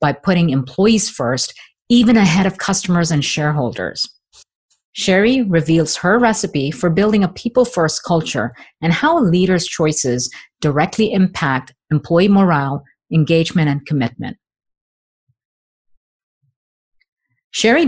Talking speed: 105 wpm